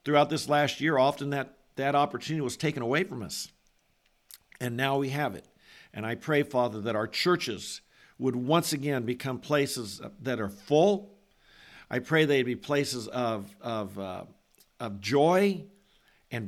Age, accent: 50-69, American